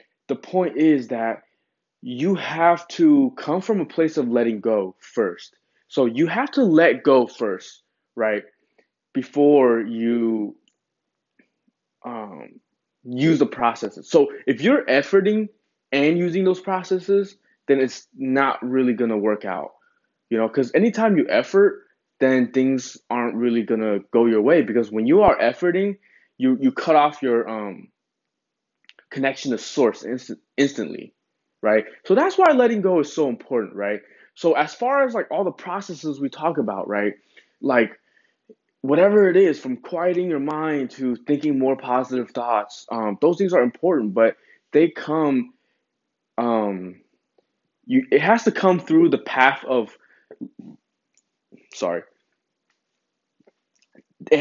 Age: 20-39